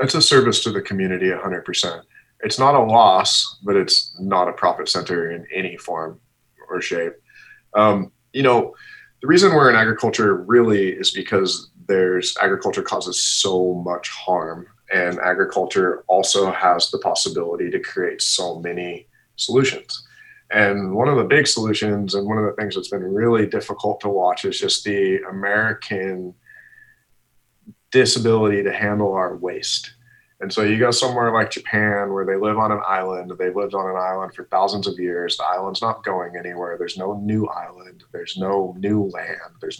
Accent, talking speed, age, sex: American, 170 wpm, 30-49, male